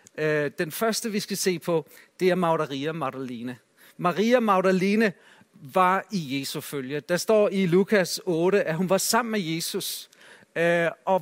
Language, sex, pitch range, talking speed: Danish, male, 170-210 Hz, 150 wpm